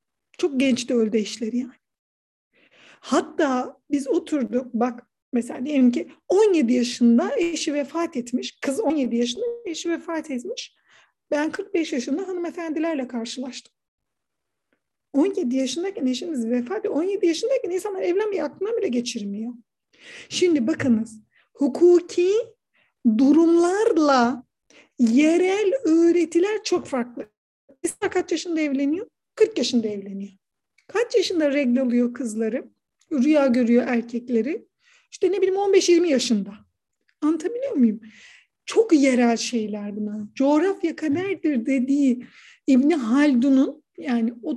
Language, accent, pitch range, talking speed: Turkish, native, 245-350 Hz, 105 wpm